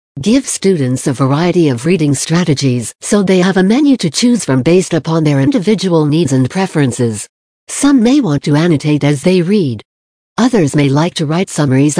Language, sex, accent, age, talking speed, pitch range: English, female, American, 60-79, 180 wpm, 135-185 Hz